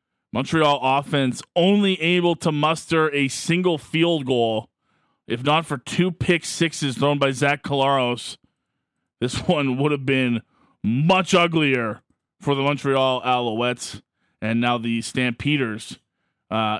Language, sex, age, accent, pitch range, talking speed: English, male, 30-49, American, 120-145 Hz, 130 wpm